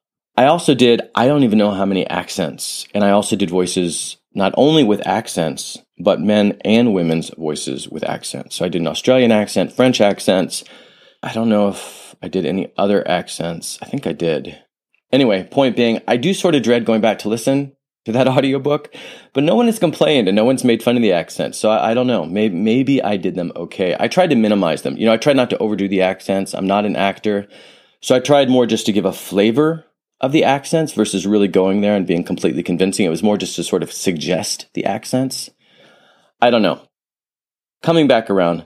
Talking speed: 215 wpm